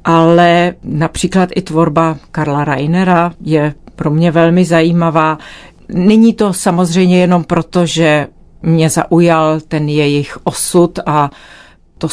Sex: female